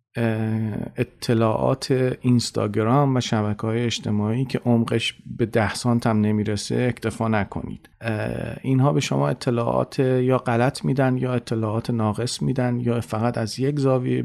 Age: 40-59